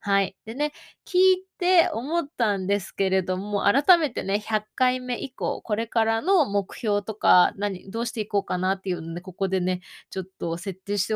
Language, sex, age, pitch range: Japanese, female, 20-39, 195-275 Hz